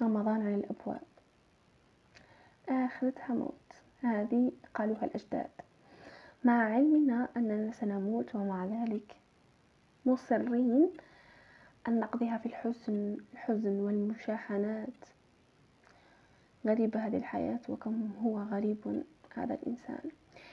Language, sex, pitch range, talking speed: Arabic, female, 215-255 Hz, 80 wpm